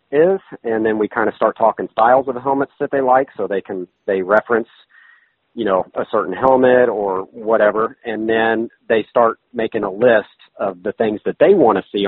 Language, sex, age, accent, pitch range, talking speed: English, male, 40-59, American, 105-125 Hz, 210 wpm